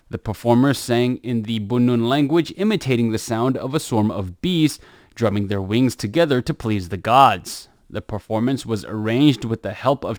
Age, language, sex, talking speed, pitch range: 20-39, English, male, 185 wpm, 110-150 Hz